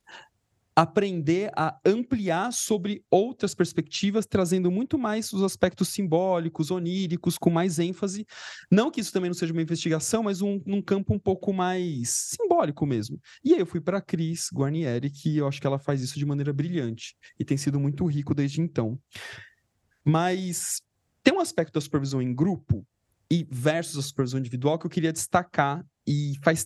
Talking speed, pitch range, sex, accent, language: 170 wpm, 135-190 Hz, male, Brazilian, Portuguese